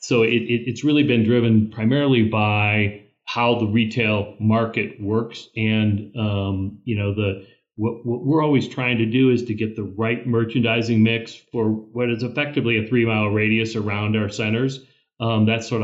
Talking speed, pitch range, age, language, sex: 180 wpm, 110-120 Hz, 40-59, English, male